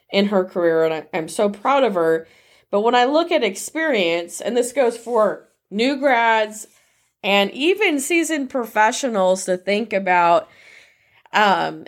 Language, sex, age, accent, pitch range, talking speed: English, female, 20-39, American, 185-260 Hz, 145 wpm